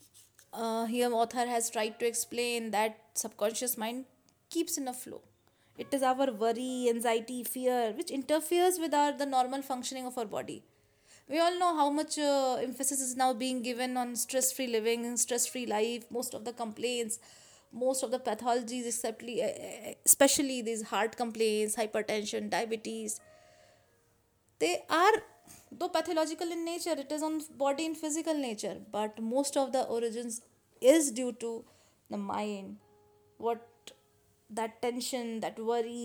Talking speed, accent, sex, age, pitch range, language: 155 wpm, native, female, 20-39, 215-265 Hz, Hindi